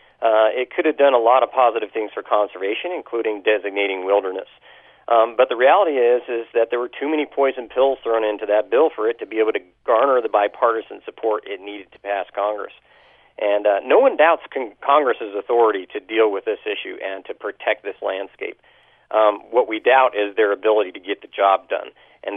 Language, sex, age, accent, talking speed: English, male, 40-59, American, 210 wpm